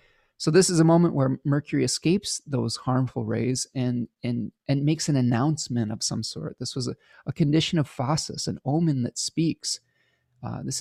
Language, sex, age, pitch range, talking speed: English, male, 30-49, 120-155 Hz, 185 wpm